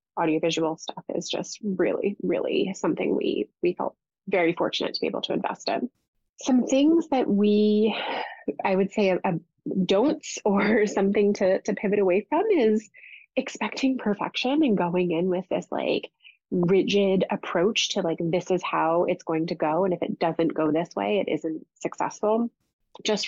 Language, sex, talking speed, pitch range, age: English, female, 170 wpm, 180-215 Hz, 20-39